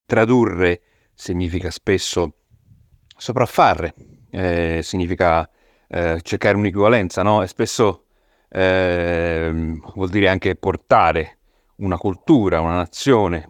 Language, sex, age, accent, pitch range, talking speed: Italian, male, 30-49, native, 85-105 Hz, 95 wpm